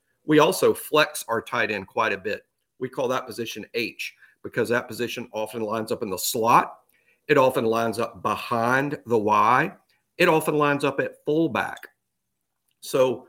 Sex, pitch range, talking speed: male, 120-155 Hz, 165 wpm